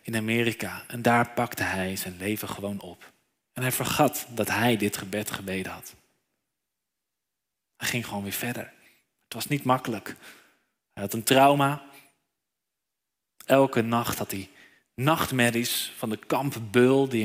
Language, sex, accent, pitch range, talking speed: Dutch, male, Dutch, 105-135 Hz, 140 wpm